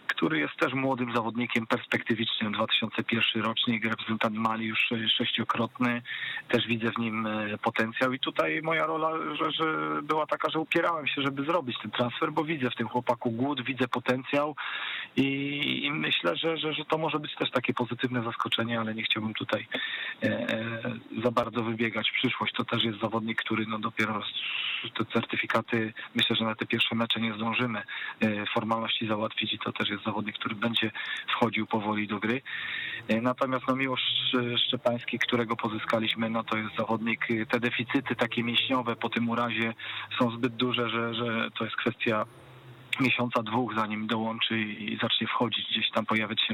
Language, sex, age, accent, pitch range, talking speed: Polish, male, 40-59, native, 110-125 Hz, 170 wpm